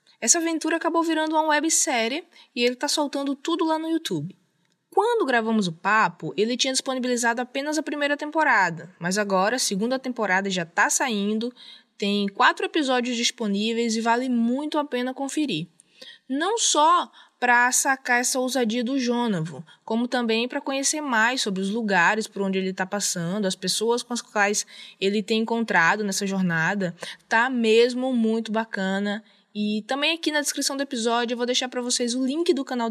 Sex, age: female, 20-39